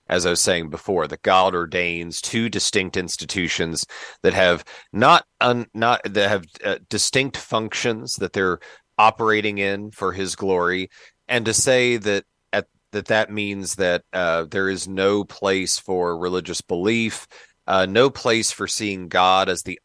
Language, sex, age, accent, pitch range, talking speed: English, male, 40-59, American, 85-105 Hz, 160 wpm